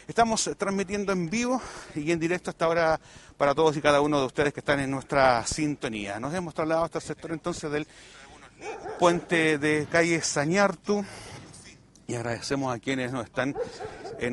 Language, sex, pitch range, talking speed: Spanish, male, 115-160 Hz, 170 wpm